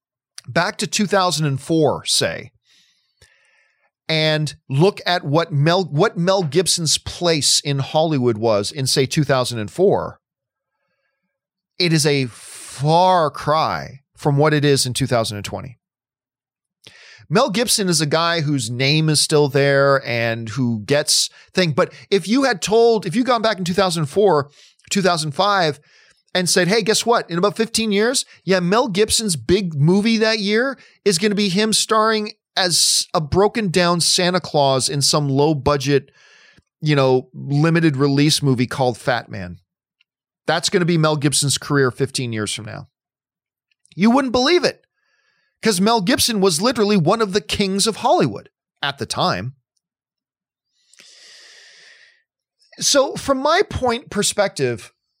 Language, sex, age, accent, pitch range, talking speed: English, male, 40-59, American, 140-205 Hz, 140 wpm